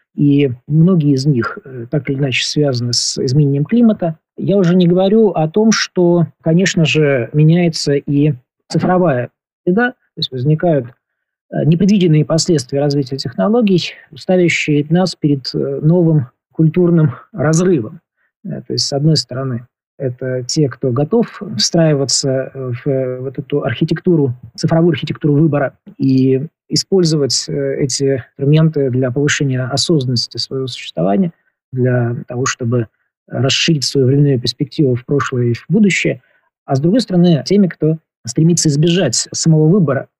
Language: Russian